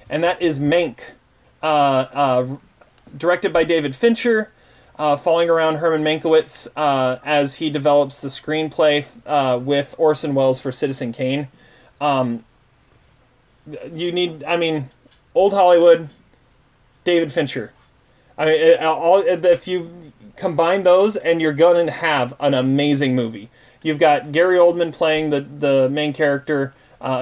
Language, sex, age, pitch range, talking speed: English, male, 30-49, 130-160 Hz, 140 wpm